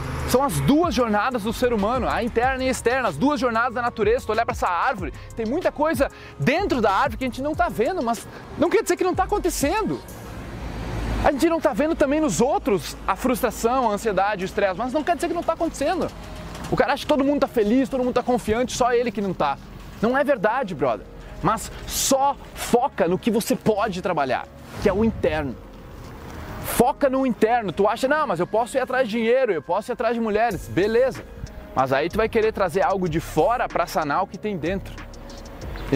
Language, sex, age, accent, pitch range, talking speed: Portuguese, male, 20-39, Brazilian, 185-275 Hz, 225 wpm